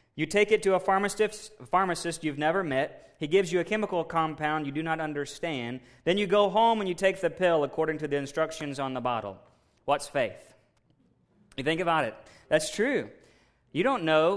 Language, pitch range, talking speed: English, 145-185 Hz, 190 wpm